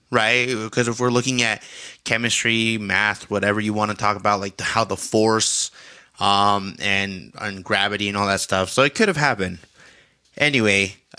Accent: American